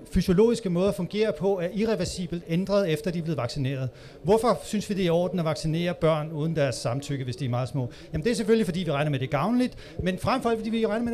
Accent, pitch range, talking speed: native, 155-205 Hz, 255 wpm